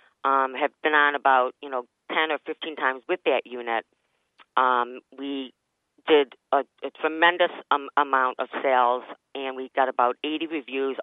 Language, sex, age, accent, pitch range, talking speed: English, female, 40-59, American, 140-200 Hz, 165 wpm